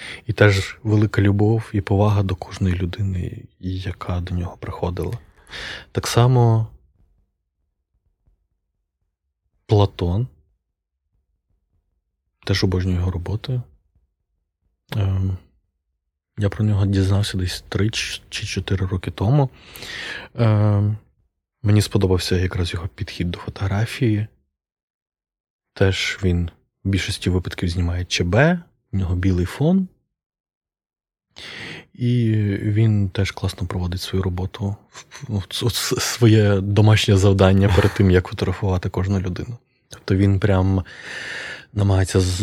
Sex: male